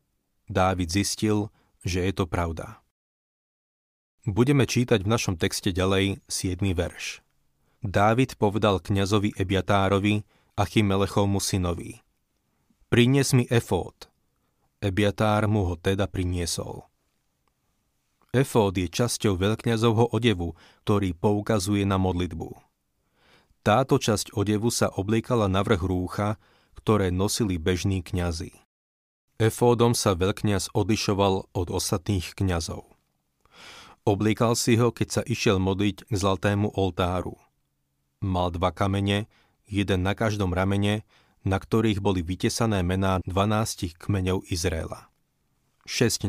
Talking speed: 105 wpm